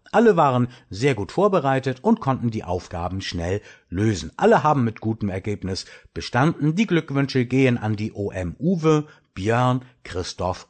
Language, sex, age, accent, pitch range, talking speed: German, male, 60-79, German, 95-135 Hz, 145 wpm